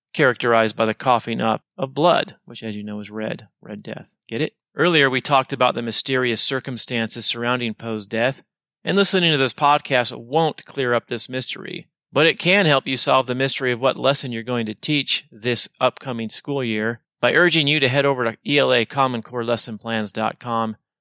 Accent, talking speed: American, 185 wpm